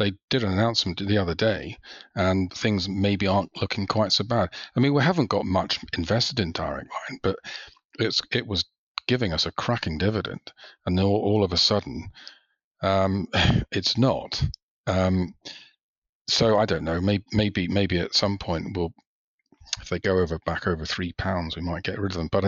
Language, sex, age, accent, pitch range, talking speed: English, male, 40-59, British, 85-105 Hz, 185 wpm